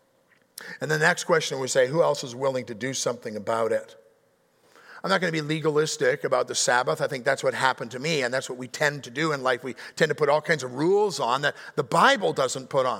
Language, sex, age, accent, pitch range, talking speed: English, male, 50-69, American, 150-230 Hz, 255 wpm